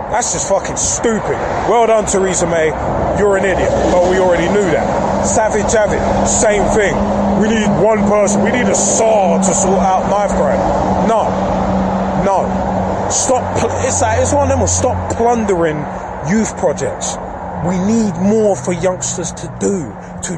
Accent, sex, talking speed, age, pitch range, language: British, male, 140 wpm, 20-39, 145-195 Hz, English